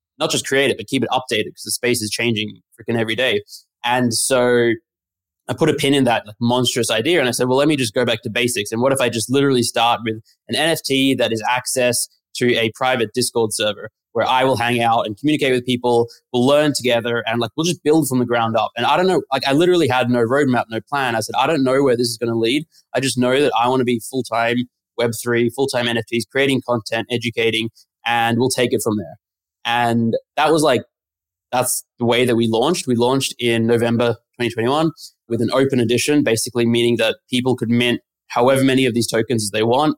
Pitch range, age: 115-130 Hz, 20-39